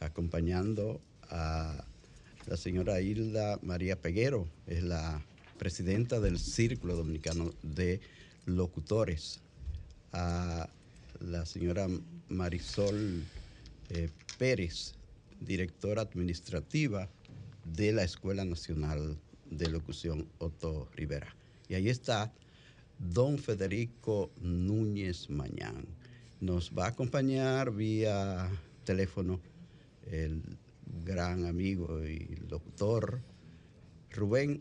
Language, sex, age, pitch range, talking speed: Spanish, male, 50-69, 85-110 Hz, 85 wpm